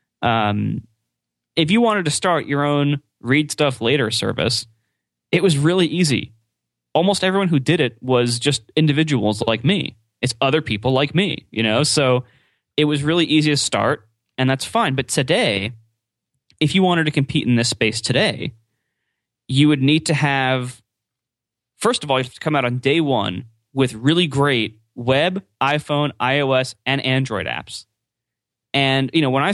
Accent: American